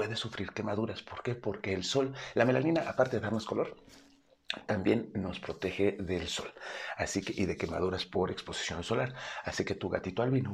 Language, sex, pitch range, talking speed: Spanish, male, 100-135 Hz, 180 wpm